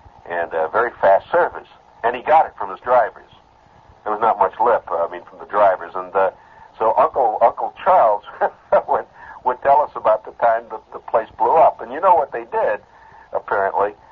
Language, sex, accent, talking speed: English, male, American, 210 wpm